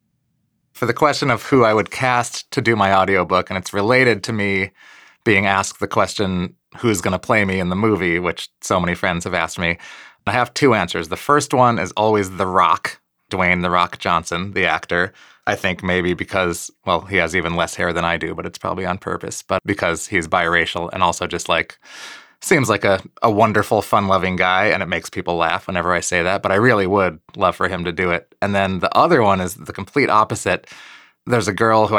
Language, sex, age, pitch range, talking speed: English, male, 30-49, 90-110 Hz, 220 wpm